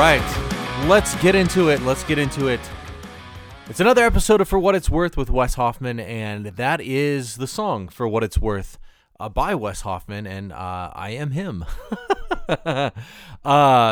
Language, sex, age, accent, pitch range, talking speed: English, male, 30-49, American, 100-145 Hz, 170 wpm